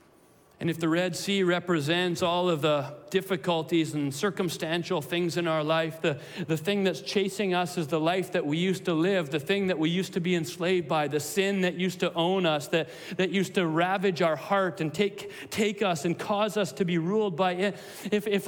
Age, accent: 40-59, American